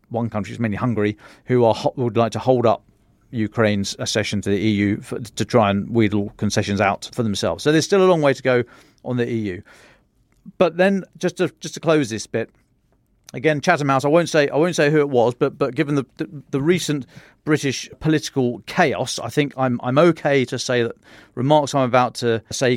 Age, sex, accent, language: 40-59, male, British, English